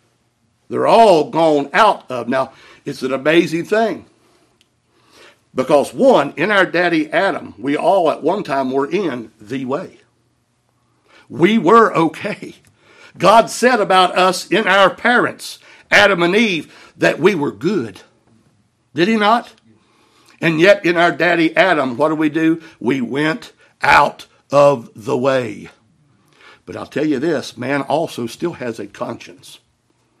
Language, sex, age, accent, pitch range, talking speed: English, male, 60-79, American, 140-190 Hz, 145 wpm